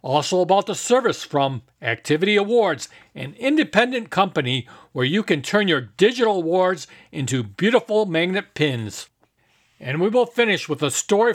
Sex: male